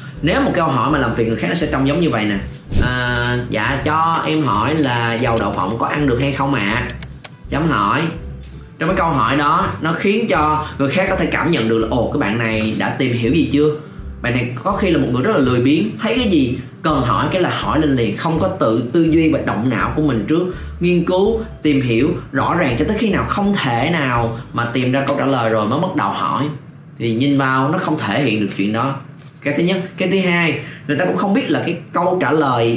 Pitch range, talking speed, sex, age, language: 120-155 Hz, 255 wpm, male, 20-39, Vietnamese